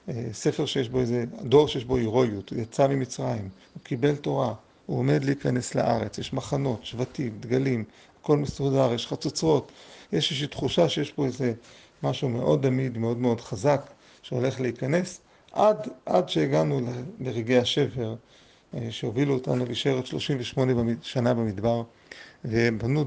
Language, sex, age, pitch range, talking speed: Hebrew, male, 40-59, 120-150 Hz, 140 wpm